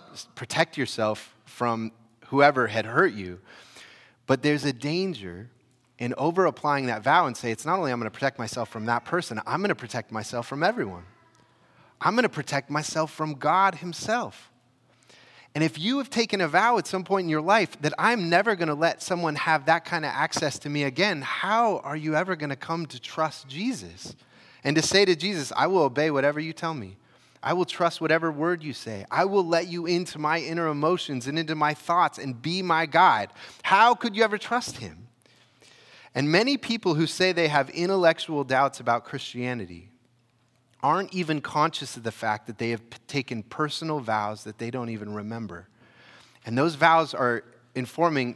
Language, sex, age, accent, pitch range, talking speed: English, male, 30-49, American, 120-165 Hz, 190 wpm